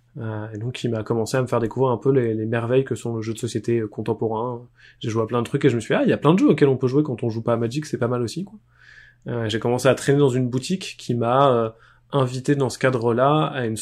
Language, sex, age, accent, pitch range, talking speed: French, male, 20-39, French, 115-135 Hz, 315 wpm